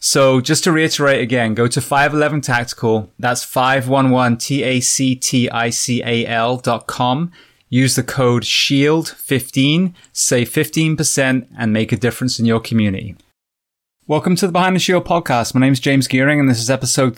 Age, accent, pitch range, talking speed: 20-39, British, 115-135 Hz, 145 wpm